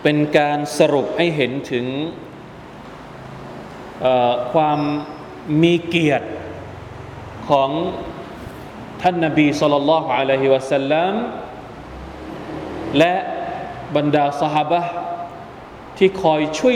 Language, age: Thai, 20-39